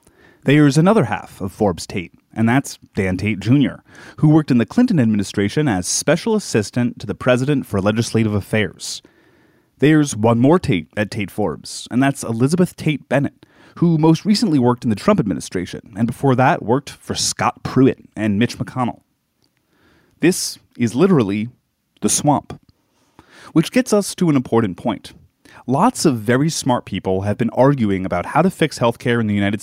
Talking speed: 170 wpm